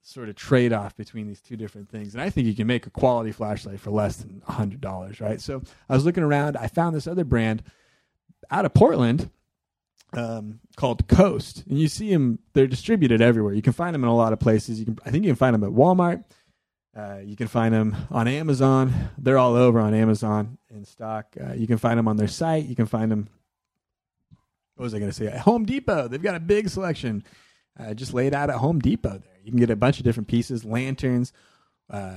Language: English